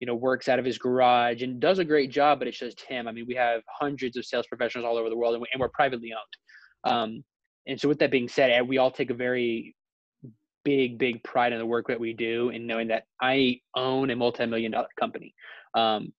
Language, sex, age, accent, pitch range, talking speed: English, male, 20-39, American, 115-130 Hz, 235 wpm